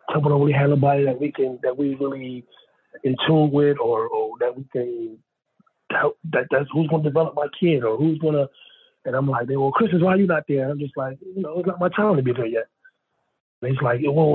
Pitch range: 140-180 Hz